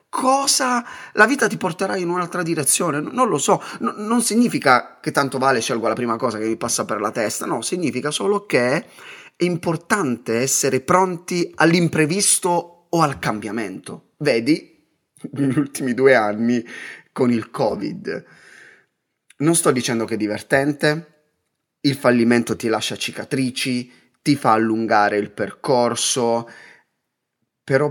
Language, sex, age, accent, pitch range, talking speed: Italian, male, 30-49, native, 115-175 Hz, 135 wpm